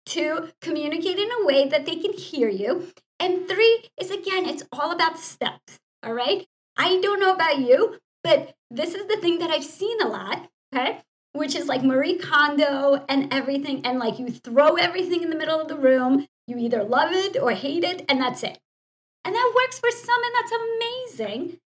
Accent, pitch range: American, 255-345 Hz